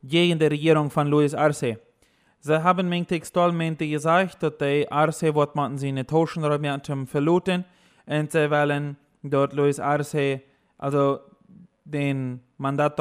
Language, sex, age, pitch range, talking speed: German, male, 20-39, 145-175 Hz, 145 wpm